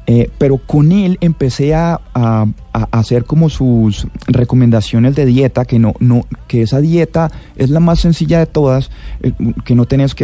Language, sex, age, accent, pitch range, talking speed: Spanish, male, 30-49, Colombian, 115-150 Hz, 180 wpm